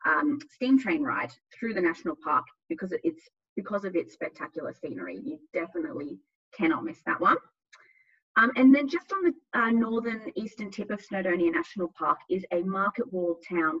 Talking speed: 175 wpm